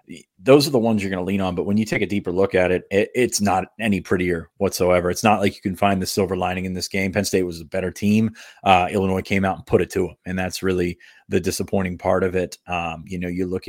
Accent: American